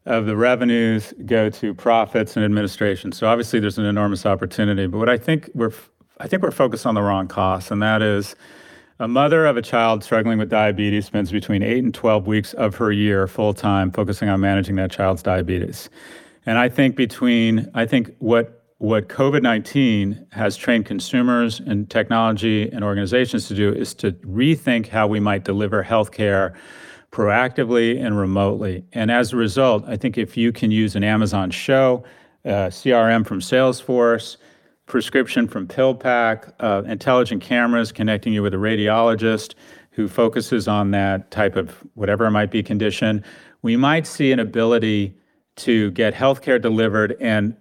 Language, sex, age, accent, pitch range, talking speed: English, male, 40-59, American, 105-120 Hz, 170 wpm